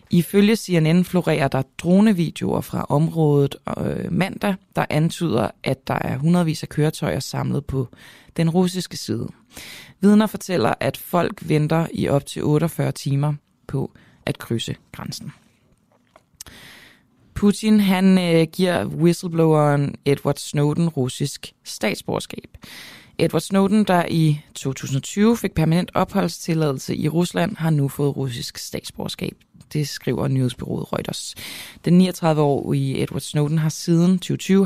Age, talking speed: 20-39, 125 wpm